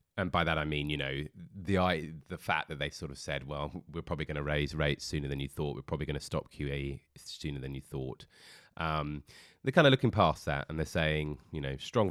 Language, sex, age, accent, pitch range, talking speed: English, male, 30-49, British, 70-95 Hz, 245 wpm